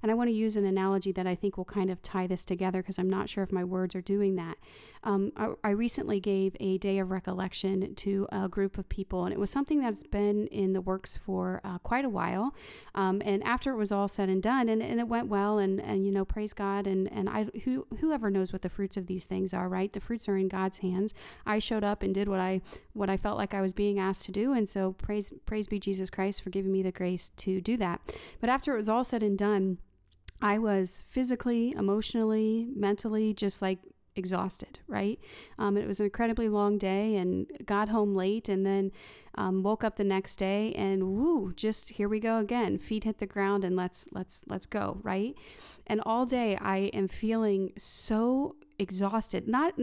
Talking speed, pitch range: 225 wpm, 190-220 Hz